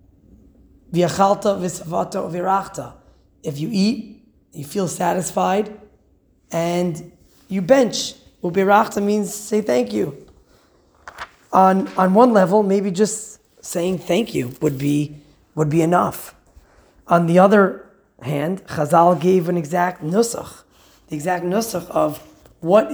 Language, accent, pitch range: English, American, 160-210 Hz